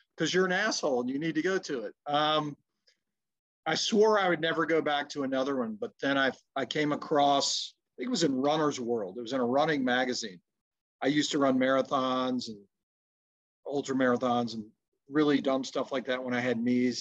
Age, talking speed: 40-59, 210 wpm